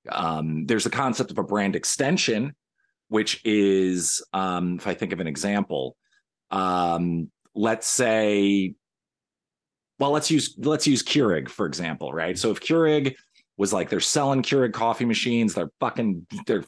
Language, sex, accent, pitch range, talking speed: English, male, American, 100-145 Hz, 150 wpm